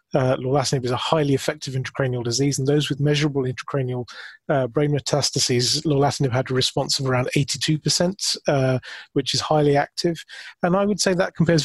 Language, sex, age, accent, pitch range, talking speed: English, male, 30-49, British, 125-145 Hz, 175 wpm